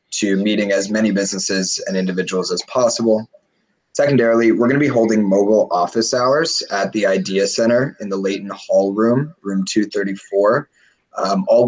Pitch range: 95-115 Hz